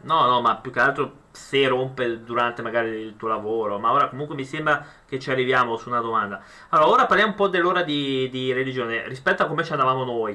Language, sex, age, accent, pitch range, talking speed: Italian, male, 30-49, native, 125-160 Hz, 225 wpm